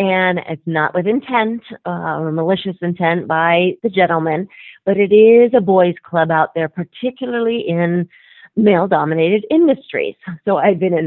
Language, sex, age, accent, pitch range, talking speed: English, female, 40-59, American, 165-210 Hz, 150 wpm